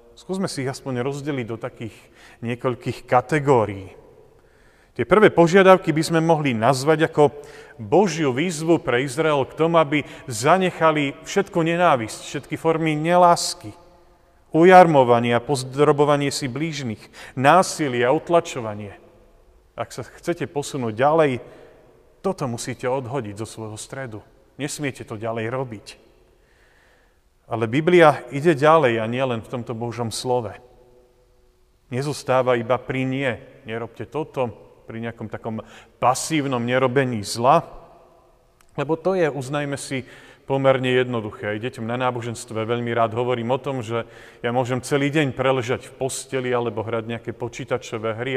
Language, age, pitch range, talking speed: Slovak, 40-59, 120-150 Hz, 130 wpm